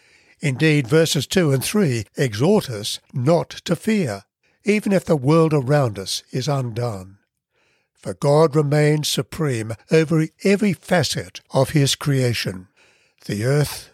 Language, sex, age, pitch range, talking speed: English, male, 60-79, 120-160 Hz, 130 wpm